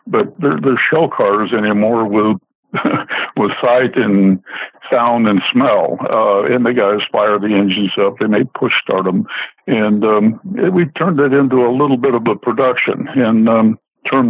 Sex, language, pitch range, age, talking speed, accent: male, English, 100-120 Hz, 60-79, 170 wpm, American